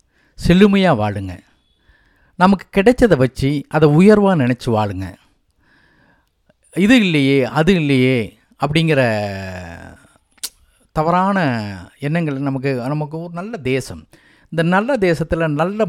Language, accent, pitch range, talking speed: Tamil, native, 110-165 Hz, 95 wpm